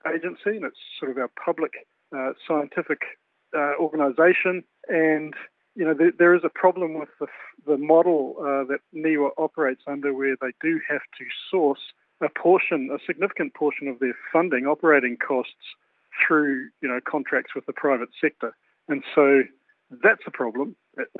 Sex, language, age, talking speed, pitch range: male, English, 50-69, 165 wpm, 135-160 Hz